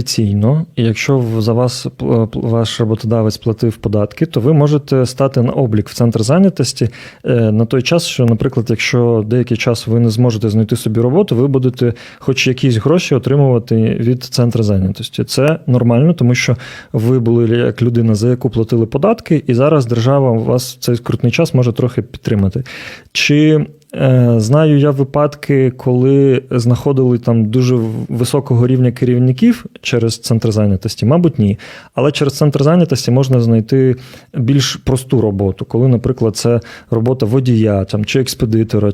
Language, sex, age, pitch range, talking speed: Ukrainian, male, 30-49, 115-140 Hz, 145 wpm